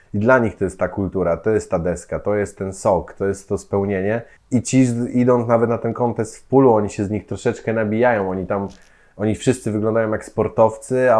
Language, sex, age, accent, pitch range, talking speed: Polish, male, 20-39, native, 105-125 Hz, 225 wpm